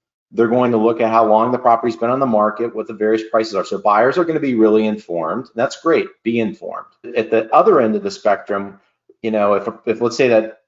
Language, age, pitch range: English, 40-59, 100-115 Hz